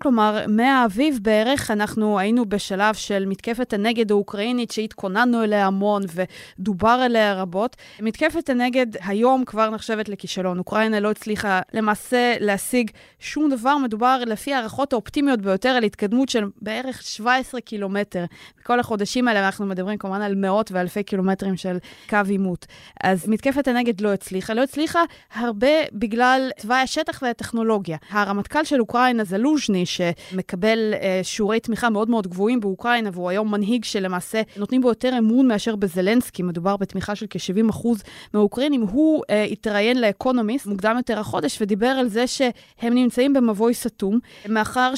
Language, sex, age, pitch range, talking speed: Hebrew, female, 20-39, 205-250 Hz, 145 wpm